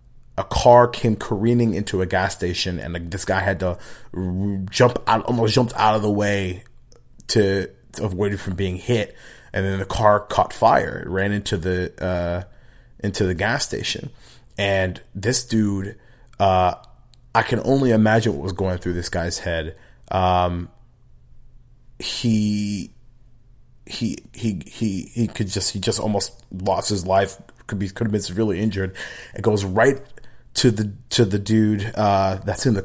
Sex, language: male, English